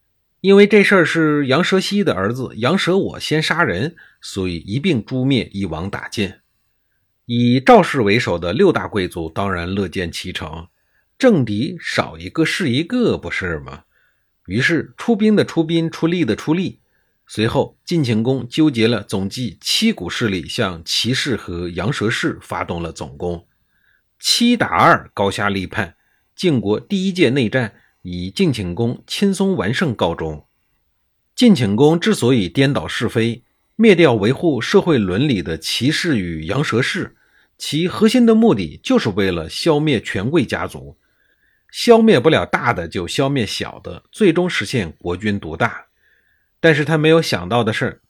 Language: Chinese